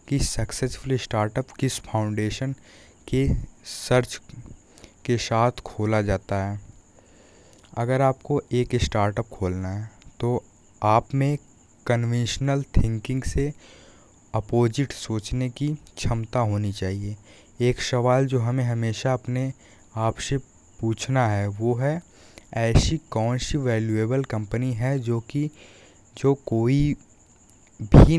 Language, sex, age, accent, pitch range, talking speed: Hindi, male, 20-39, native, 105-130 Hz, 115 wpm